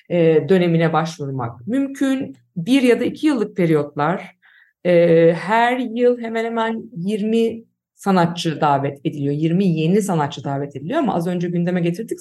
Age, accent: 50-69, native